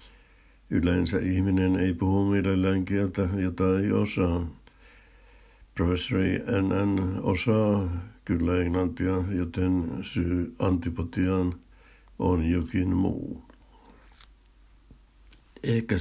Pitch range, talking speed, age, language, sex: 85-100 Hz, 80 wpm, 60-79, Finnish, male